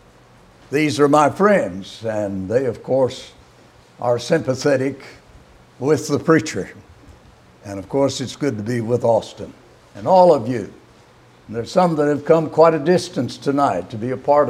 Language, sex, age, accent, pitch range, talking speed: English, male, 60-79, American, 110-160 Hz, 165 wpm